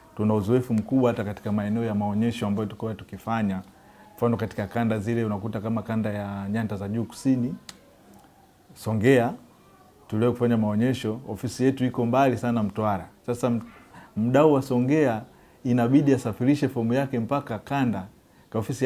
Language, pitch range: Swahili, 110-140 Hz